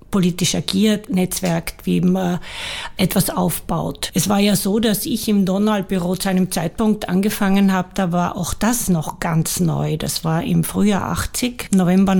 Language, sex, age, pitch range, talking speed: German, female, 60-79, 170-210 Hz, 160 wpm